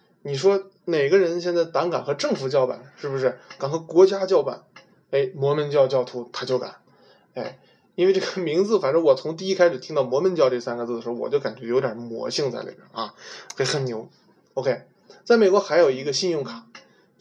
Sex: male